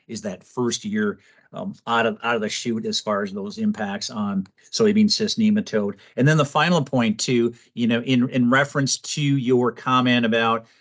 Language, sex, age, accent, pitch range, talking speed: English, male, 50-69, American, 120-155 Hz, 195 wpm